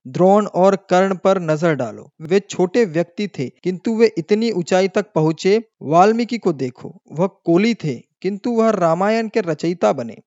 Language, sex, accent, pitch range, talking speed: Hindi, male, native, 170-210 Hz, 165 wpm